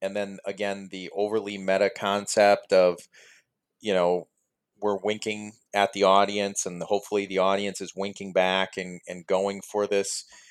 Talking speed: 155 wpm